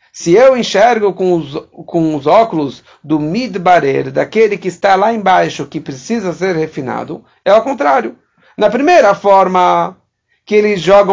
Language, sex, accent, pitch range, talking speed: English, male, Brazilian, 170-220 Hz, 150 wpm